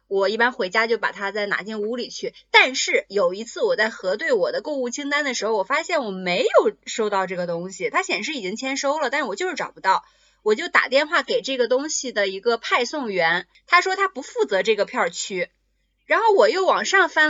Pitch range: 210-340 Hz